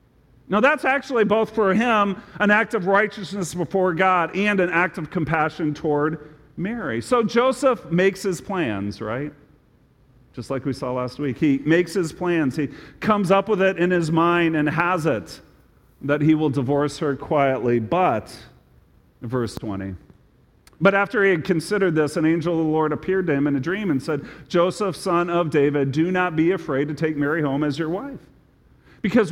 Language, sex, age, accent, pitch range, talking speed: English, male, 40-59, American, 145-200 Hz, 185 wpm